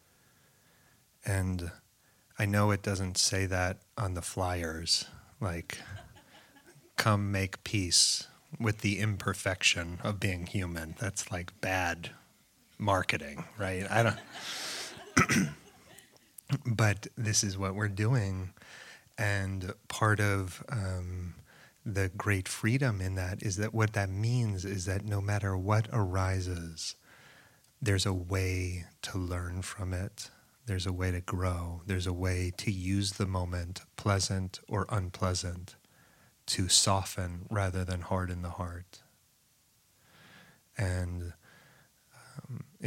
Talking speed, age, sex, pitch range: 120 wpm, 30-49, male, 90-105 Hz